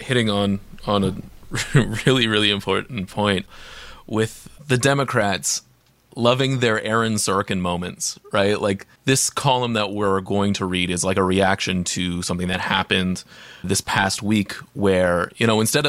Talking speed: 150 wpm